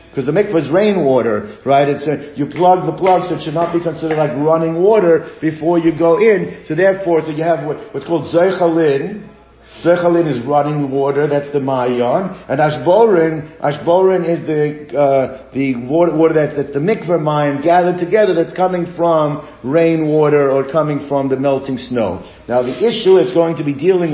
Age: 50-69